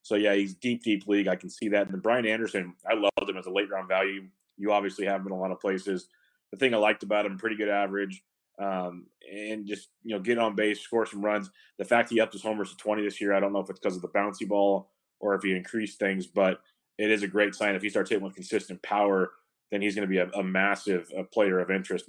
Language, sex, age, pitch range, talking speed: English, male, 20-39, 100-115 Hz, 270 wpm